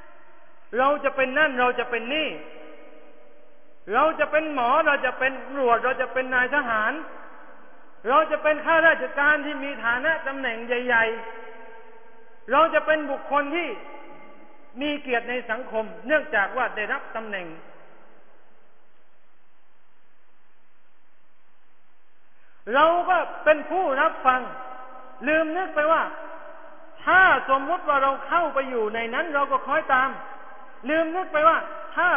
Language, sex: Thai, male